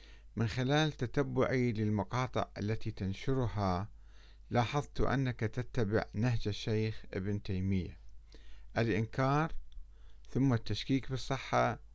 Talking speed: 85 wpm